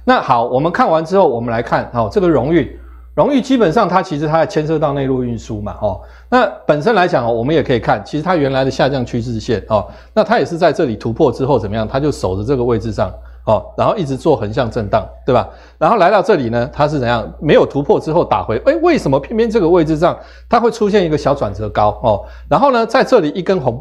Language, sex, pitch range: Chinese, male, 105-170 Hz